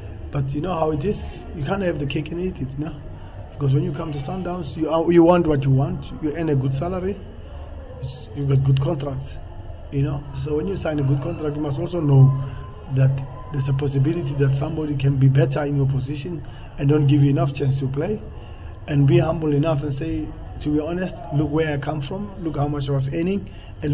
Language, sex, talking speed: English, male, 230 wpm